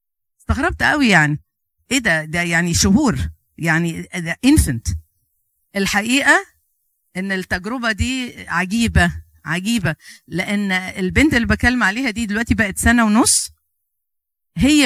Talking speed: 115 wpm